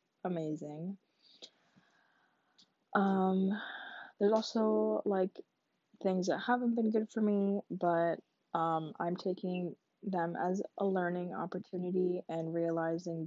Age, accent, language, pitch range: 20-39, American, English, 165-195 Hz